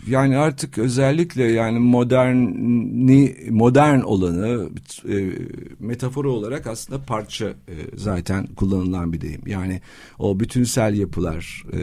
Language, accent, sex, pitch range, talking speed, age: Turkish, native, male, 95-130 Hz, 95 wpm, 50-69